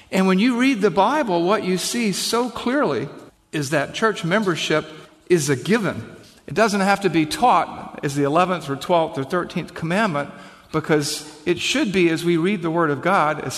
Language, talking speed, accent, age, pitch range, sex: English, 195 wpm, American, 50-69, 145-185 Hz, male